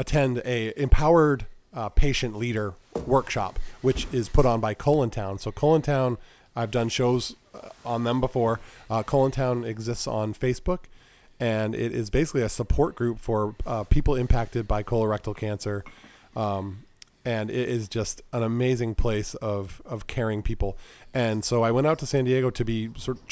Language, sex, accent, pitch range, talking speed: English, male, American, 105-125 Hz, 170 wpm